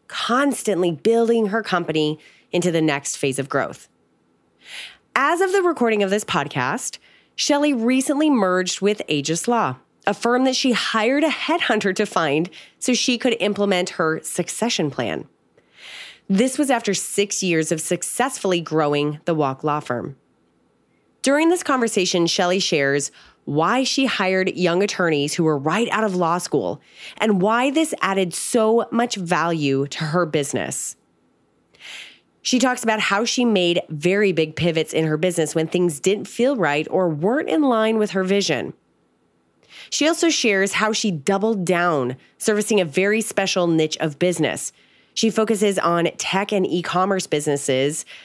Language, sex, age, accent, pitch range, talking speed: English, female, 30-49, American, 160-225 Hz, 155 wpm